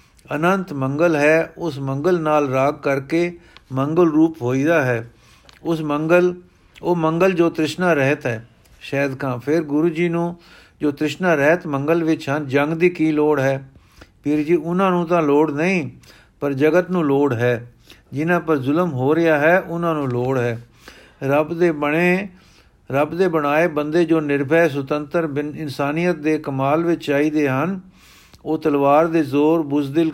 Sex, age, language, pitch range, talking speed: male, 50-69, Punjabi, 135-165 Hz, 160 wpm